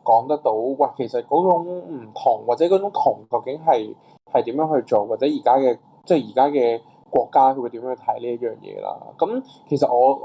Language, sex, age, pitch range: Chinese, male, 20-39, 120-155 Hz